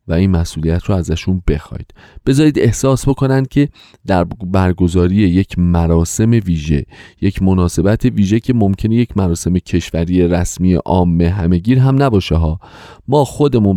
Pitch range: 90-130 Hz